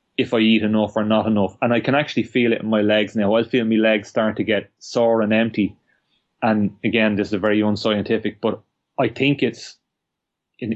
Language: English